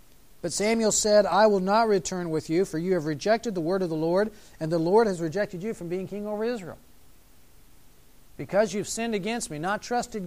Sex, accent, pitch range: male, American, 155-210 Hz